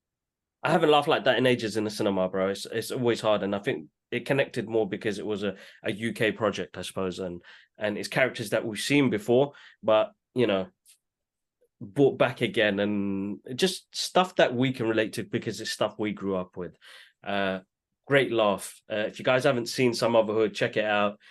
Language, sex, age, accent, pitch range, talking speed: English, male, 20-39, British, 105-135 Hz, 205 wpm